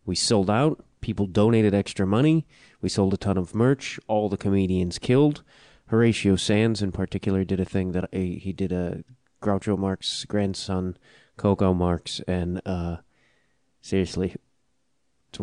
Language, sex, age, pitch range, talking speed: English, male, 30-49, 95-110 Hz, 150 wpm